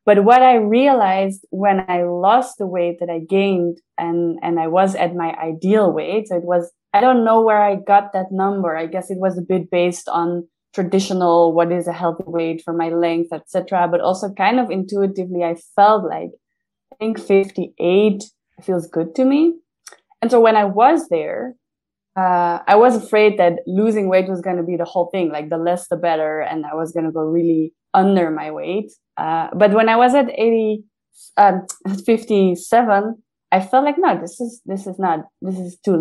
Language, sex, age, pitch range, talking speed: English, female, 20-39, 175-205 Hz, 200 wpm